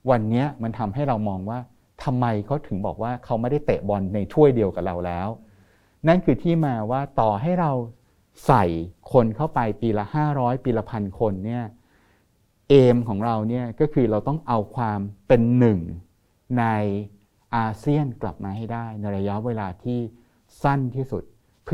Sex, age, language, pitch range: male, 60-79, Thai, 105-135 Hz